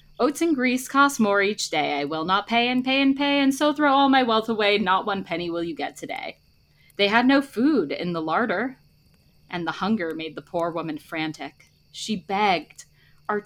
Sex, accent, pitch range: female, American, 160-230 Hz